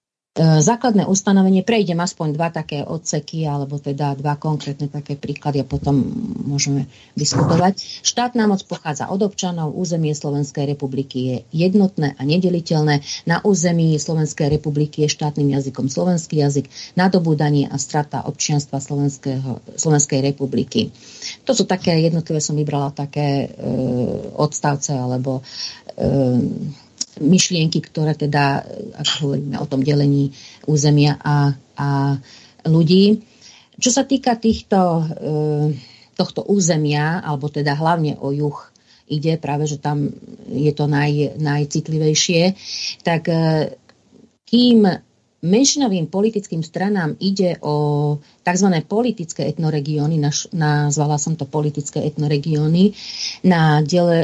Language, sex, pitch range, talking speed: Slovak, female, 145-180 Hz, 115 wpm